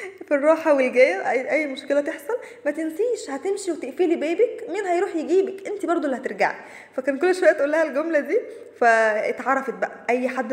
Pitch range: 225-300 Hz